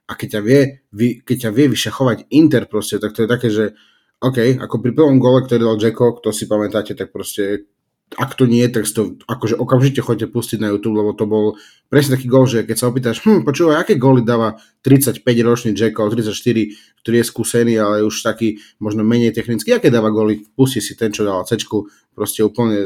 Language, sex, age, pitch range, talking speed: Slovak, male, 30-49, 105-125 Hz, 205 wpm